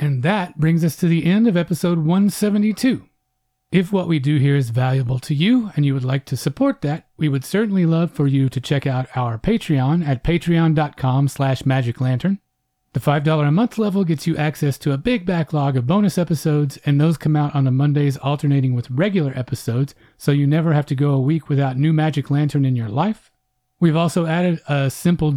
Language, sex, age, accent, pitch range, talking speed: English, male, 40-59, American, 135-170 Hz, 205 wpm